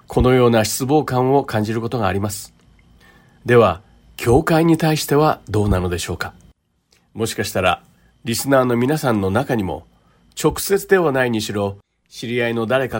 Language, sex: Japanese, male